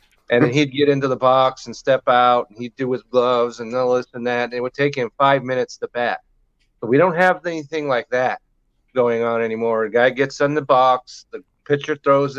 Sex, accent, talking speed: male, American, 230 wpm